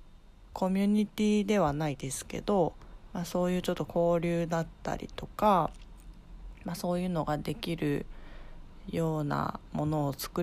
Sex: female